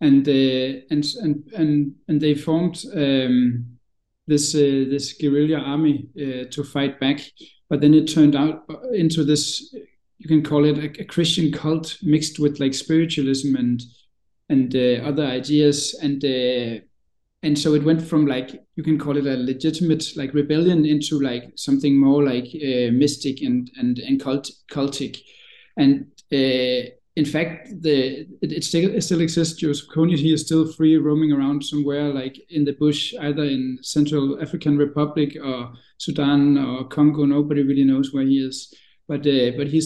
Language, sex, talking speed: English, male, 170 wpm